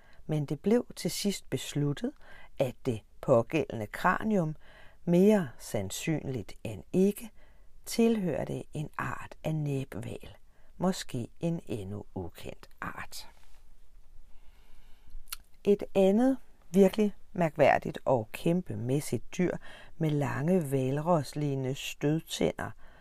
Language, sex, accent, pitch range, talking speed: Danish, female, native, 100-165 Hz, 90 wpm